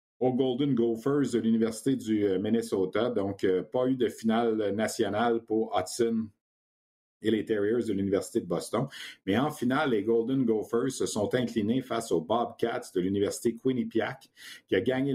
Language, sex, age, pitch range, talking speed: French, male, 50-69, 100-125 Hz, 160 wpm